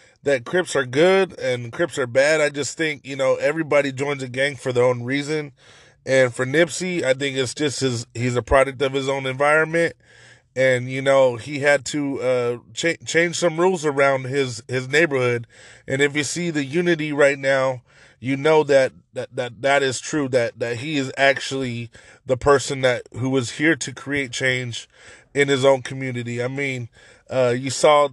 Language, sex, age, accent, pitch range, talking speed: English, male, 20-39, American, 130-150 Hz, 190 wpm